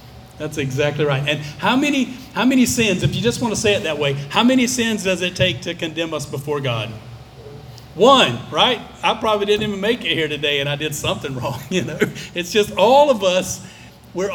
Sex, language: male, English